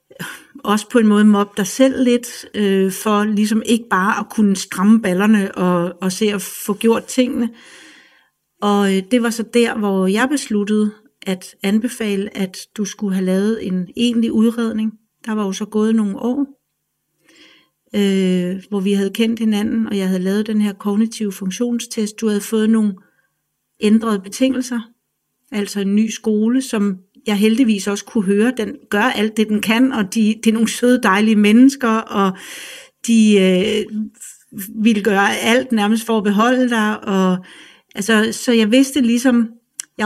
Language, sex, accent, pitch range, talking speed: Danish, female, native, 200-230 Hz, 160 wpm